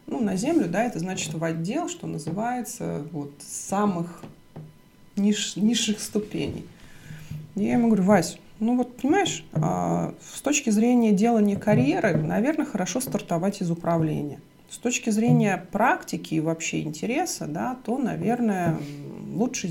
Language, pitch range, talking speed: Russian, 160-220 Hz, 135 wpm